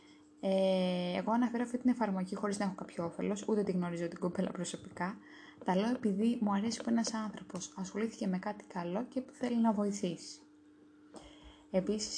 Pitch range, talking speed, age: 190-245 Hz, 170 wpm, 20-39